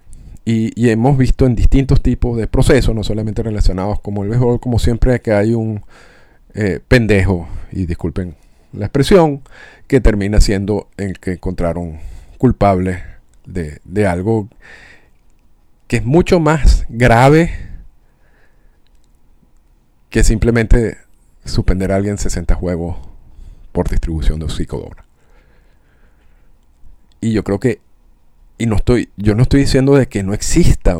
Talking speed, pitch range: 130 wpm, 85-110 Hz